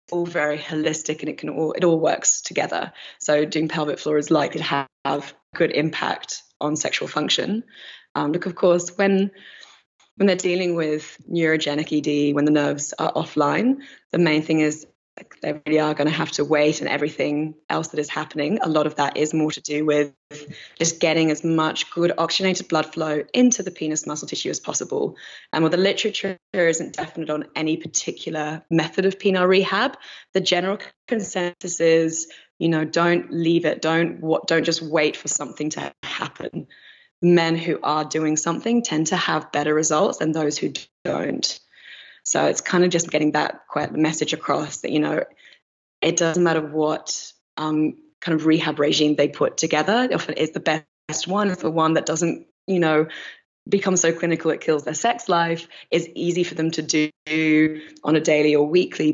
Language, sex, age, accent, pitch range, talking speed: English, female, 20-39, British, 155-175 Hz, 185 wpm